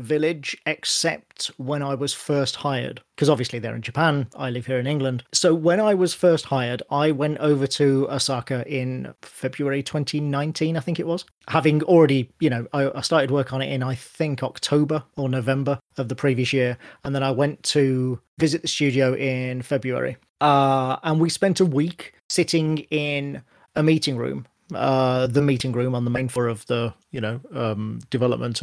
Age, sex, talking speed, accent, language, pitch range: 40-59, male, 185 wpm, British, English, 130-150 Hz